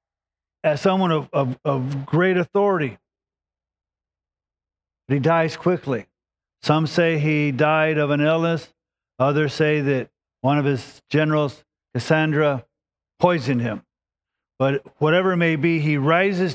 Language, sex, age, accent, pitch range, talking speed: English, male, 50-69, American, 135-175 Hz, 120 wpm